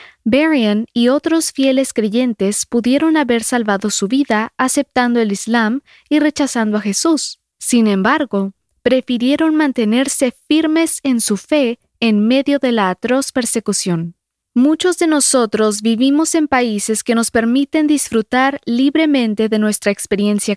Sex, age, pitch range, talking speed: female, 20-39, 215-285 Hz, 130 wpm